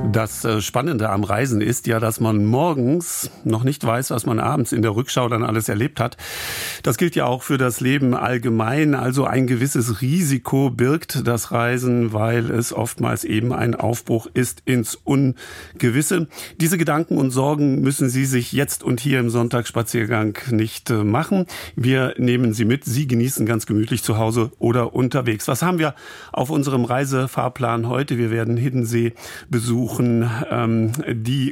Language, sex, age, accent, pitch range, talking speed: German, male, 50-69, German, 115-135 Hz, 160 wpm